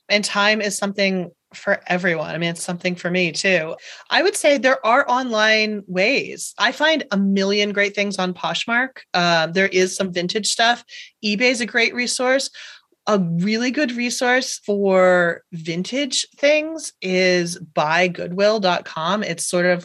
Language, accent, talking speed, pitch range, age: English, American, 155 wpm, 180-230 Hz, 30-49